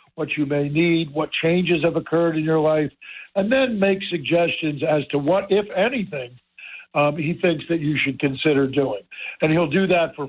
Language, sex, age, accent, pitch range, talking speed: English, male, 60-79, American, 140-165 Hz, 190 wpm